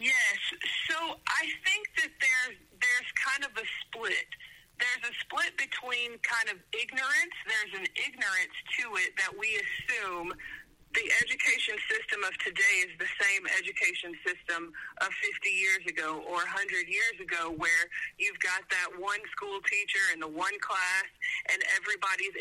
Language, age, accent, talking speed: English, 30-49, American, 155 wpm